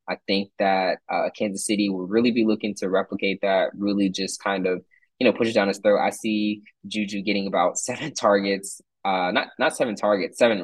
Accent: American